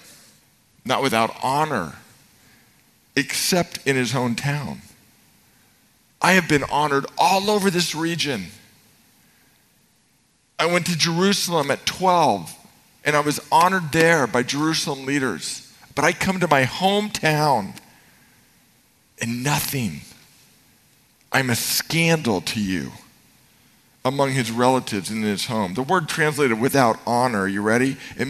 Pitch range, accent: 125-170 Hz, American